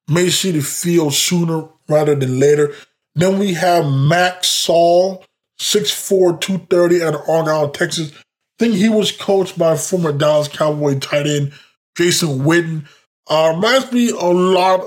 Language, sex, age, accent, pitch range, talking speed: English, male, 20-39, American, 145-180 Hz, 150 wpm